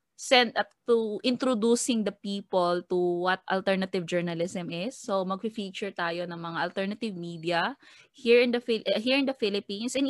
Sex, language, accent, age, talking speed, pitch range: female, Filipino, native, 20-39, 160 wpm, 165-225 Hz